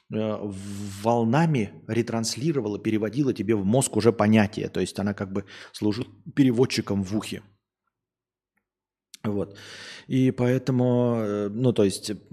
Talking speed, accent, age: 110 wpm, native, 30-49